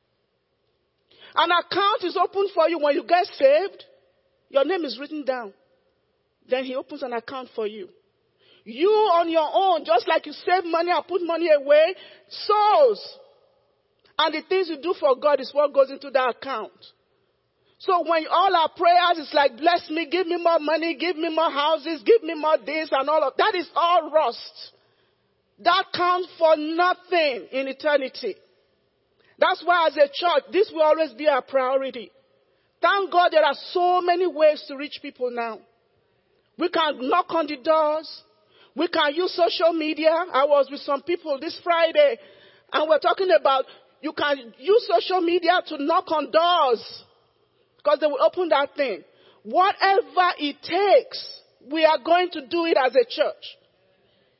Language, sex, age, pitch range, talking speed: English, male, 40-59, 295-365 Hz, 170 wpm